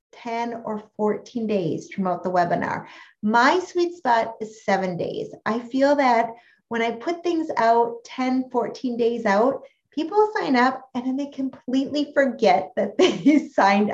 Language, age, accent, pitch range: English, 30-49, American, 195-255 Hz